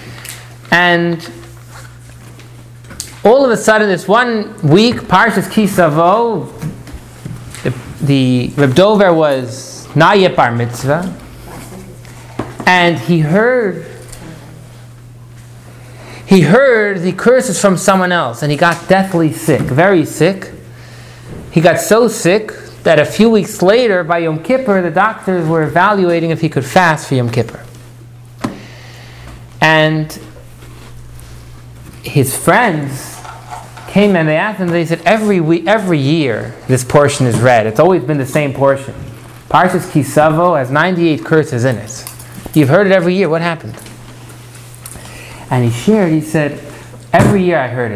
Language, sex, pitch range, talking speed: English, male, 120-175 Hz, 130 wpm